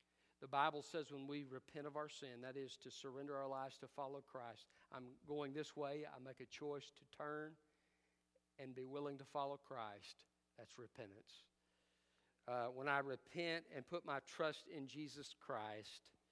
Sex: male